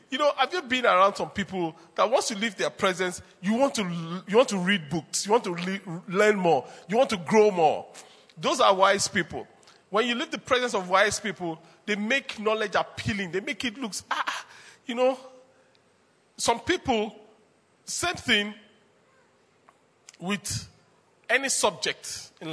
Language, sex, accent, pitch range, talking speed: English, male, Nigerian, 185-240 Hz, 170 wpm